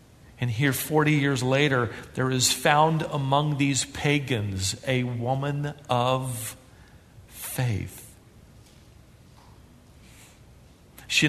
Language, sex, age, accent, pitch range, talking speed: English, male, 50-69, American, 115-135 Hz, 85 wpm